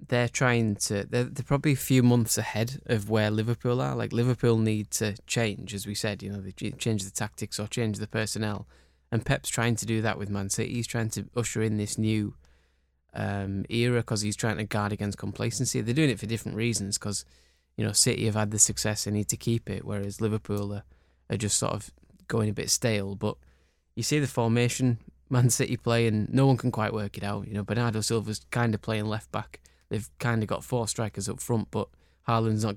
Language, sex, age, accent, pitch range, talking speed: English, male, 10-29, British, 100-115 Hz, 225 wpm